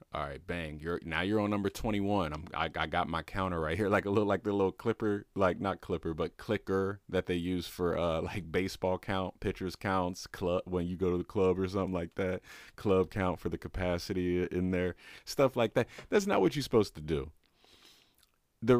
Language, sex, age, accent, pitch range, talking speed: English, male, 30-49, American, 85-100 Hz, 215 wpm